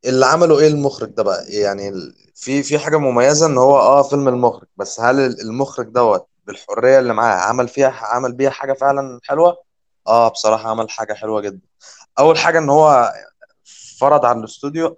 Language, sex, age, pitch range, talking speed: Arabic, male, 20-39, 110-140 Hz, 170 wpm